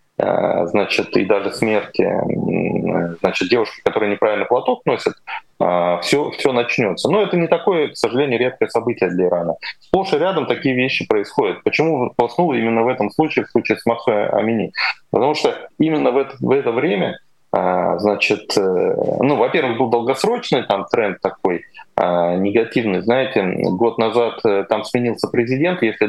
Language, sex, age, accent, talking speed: Russian, male, 20-39, native, 145 wpm